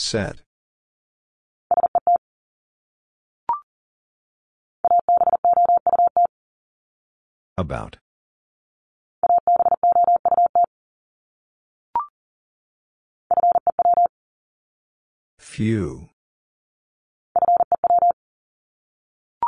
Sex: female